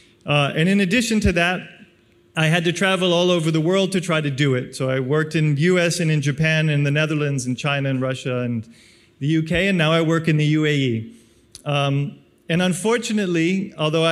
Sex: male